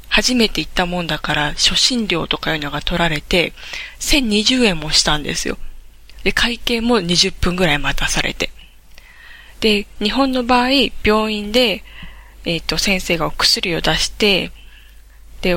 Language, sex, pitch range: Japanese, female, 165-215 Hz